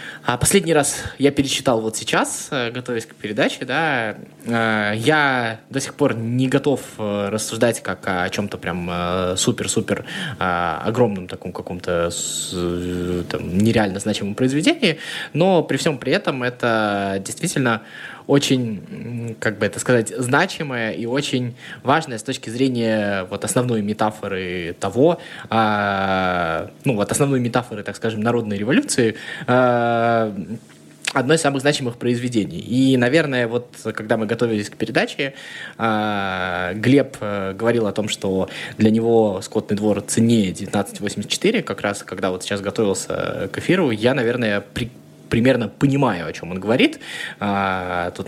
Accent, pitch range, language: native, 100-125 Hz, Russian